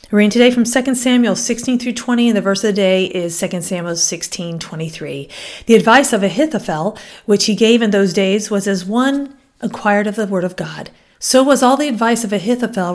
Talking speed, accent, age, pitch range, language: 210 wpm, American, 40-59, 195-250 Hz, English